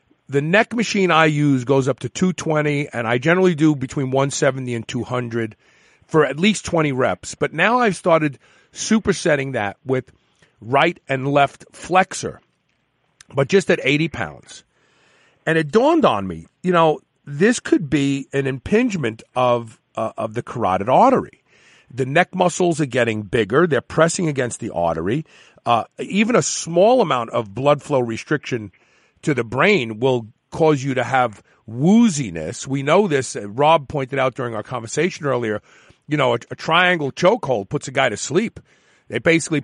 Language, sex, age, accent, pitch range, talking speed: English, male, 40-59, American, 125-165 Hz, 165 wpm